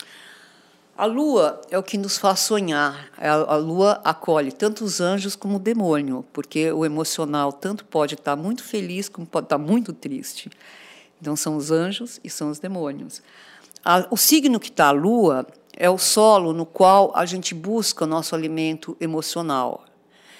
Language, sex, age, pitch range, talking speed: Portuguese, female, 50-69, 160-215 Hz, 165 wpm